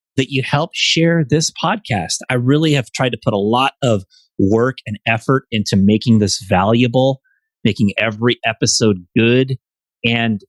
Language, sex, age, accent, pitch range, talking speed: English, male, 30-49, American, 105-125 Hz, 155 wpm